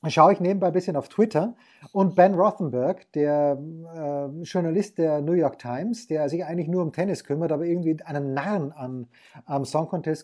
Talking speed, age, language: 190 wpm, 30-49, German